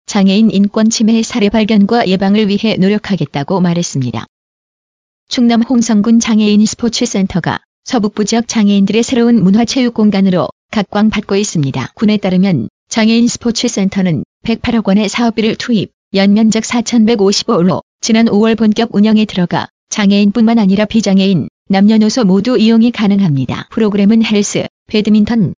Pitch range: 195-225 Hz